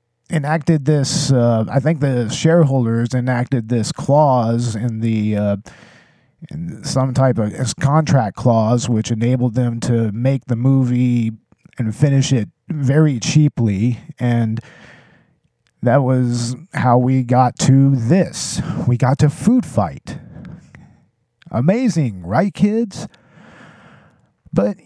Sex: male